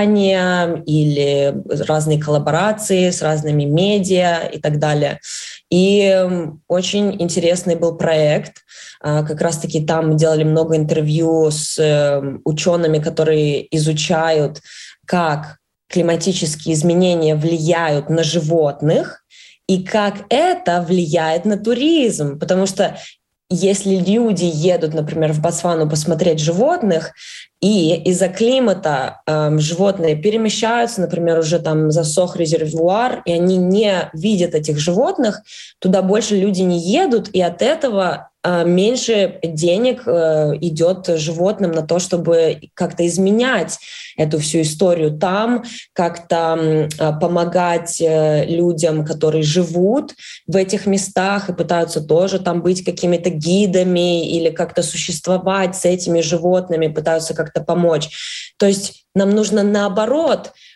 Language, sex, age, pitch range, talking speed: Russian, female, 20-39, 160-190 Hz, 115 wpm